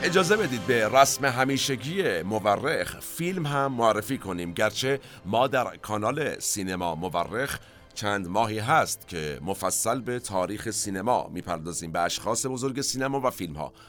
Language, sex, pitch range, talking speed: Persian, male, 95-130 Hz, 145 wpm